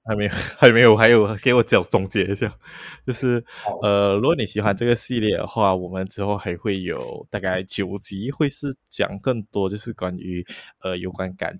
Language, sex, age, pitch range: Chinese, male, 20-39, 95-110 Hz